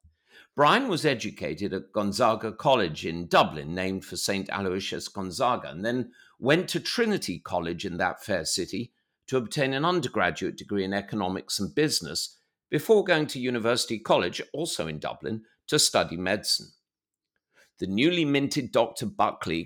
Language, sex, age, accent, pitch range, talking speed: English, male, 50-69, British, 100-140 Hz, 145 wpm